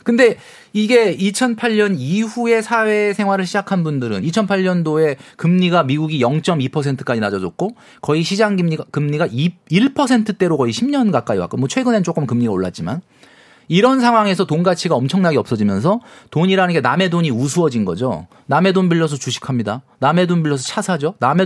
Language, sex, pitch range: Korean, male, 150-220 Hz